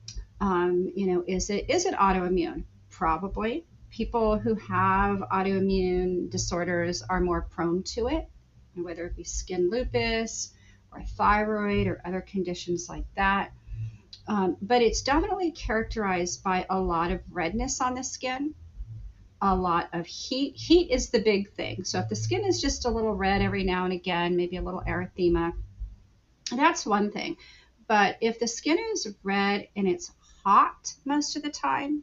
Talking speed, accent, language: 160 wpm, American, English